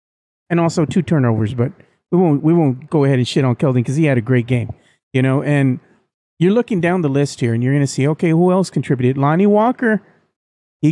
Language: English